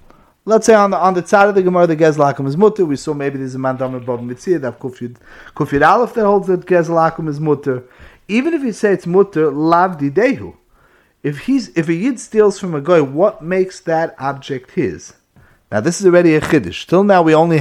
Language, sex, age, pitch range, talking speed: English, male, 30-49, 140-190 Hz, 215 wpm